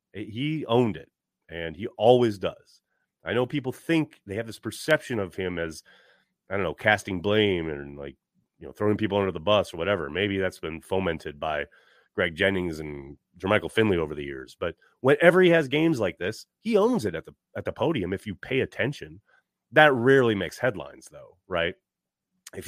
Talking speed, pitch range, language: 195 wpm, 90-125 Hz, English